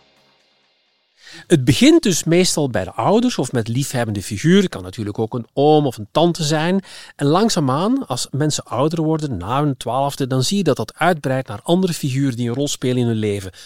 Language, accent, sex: Dutch, Dutch, male